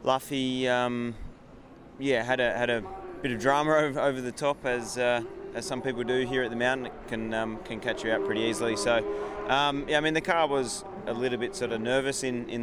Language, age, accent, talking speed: English, 20-39, Australian, 235 wpm